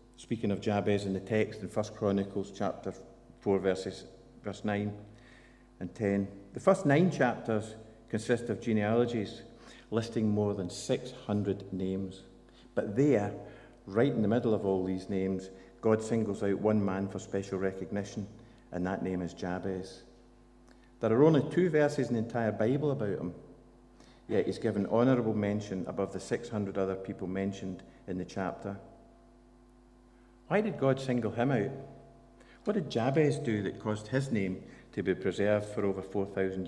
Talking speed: 155 wpm